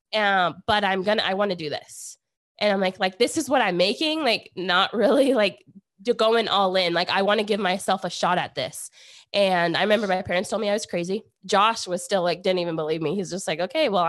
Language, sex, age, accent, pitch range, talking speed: English, female, 20-39, American, 190-250 Hz, 245 wpm